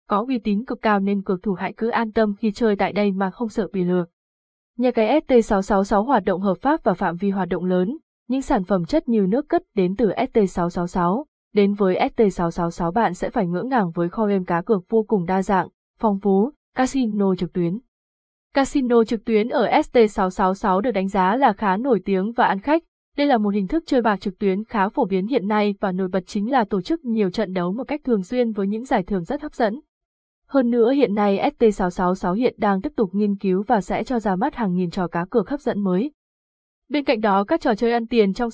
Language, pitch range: Vietnamese, 195-250 Hz